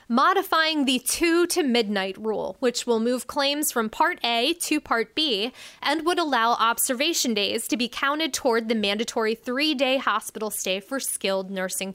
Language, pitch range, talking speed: English, 215-285 Hz, 155 wpm